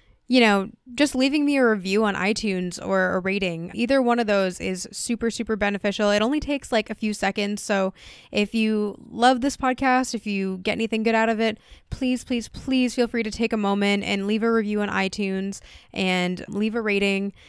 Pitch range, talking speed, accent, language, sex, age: 195-235 Hz, 205 wpm, American, English, female, 10-29